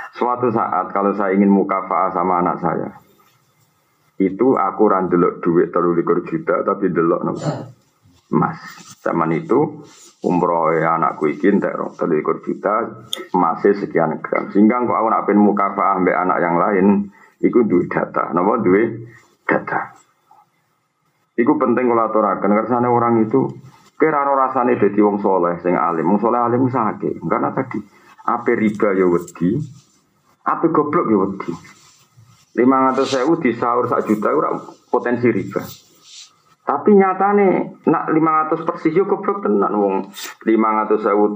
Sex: male